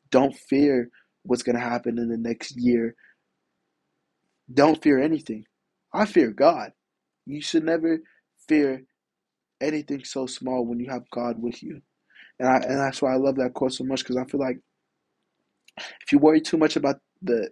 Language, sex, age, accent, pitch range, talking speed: English, male, 20-39, American, 120-140 Hz, 170 wpm